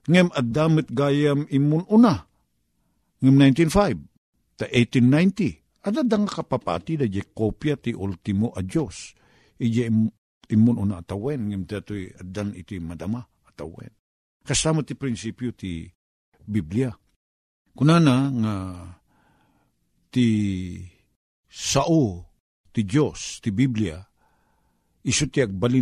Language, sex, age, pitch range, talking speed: Filipino, male, 50-69, 100-140 Hz, 100 wpm